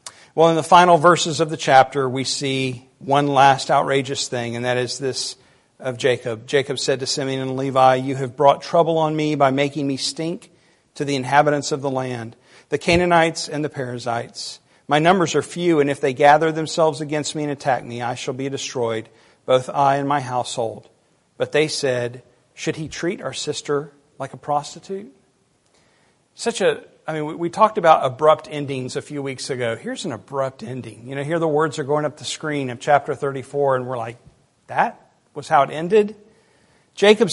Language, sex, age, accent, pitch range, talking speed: English, male, 50-69, American, 135-190 Hz, 195 wpm